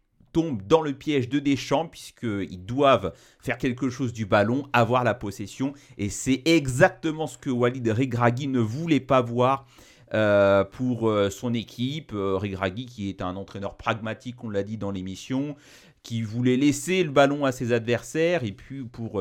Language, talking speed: French, 170 wpm